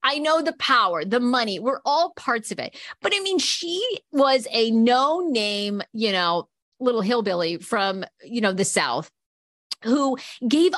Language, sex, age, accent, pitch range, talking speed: English, female, 40-59, American, 190-285 Hz, 165 wpm